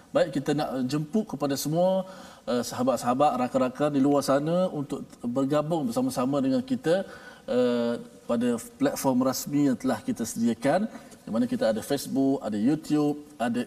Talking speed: 145 wpm